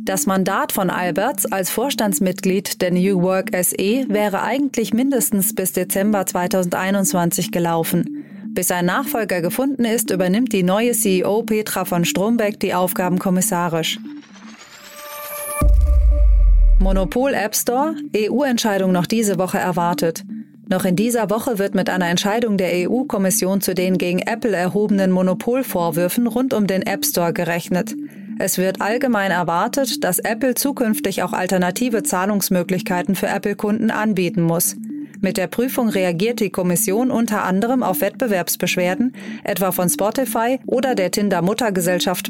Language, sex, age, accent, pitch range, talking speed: German, female, 30-49, German, 185-230 Hz, 130 wpm